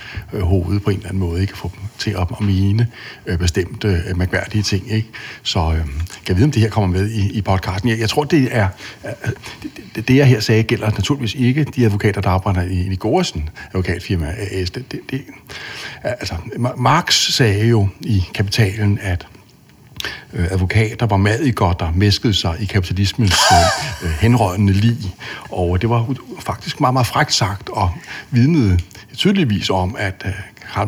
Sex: male